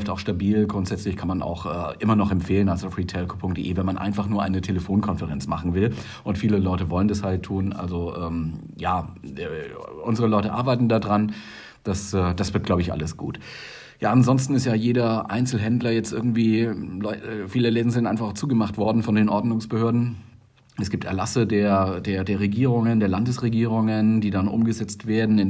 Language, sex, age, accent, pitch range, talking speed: German, male, 40-59, German, 100-115 Hz, 180 wpm